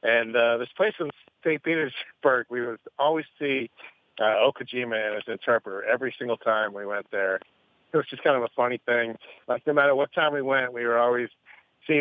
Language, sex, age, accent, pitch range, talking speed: English, male, 50-69, American, 110-140 Hz, 205 wpm